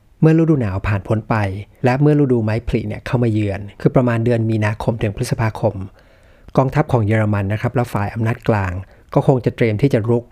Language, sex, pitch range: Thai, male, 105-130 Hz